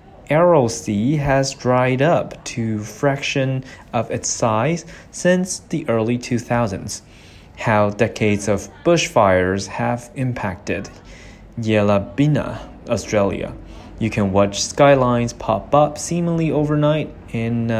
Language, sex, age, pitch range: Chinese, male, 20-39, 100-135 Hz